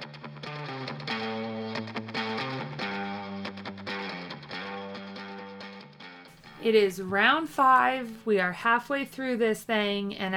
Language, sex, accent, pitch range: English, female, American, 180-225 Hz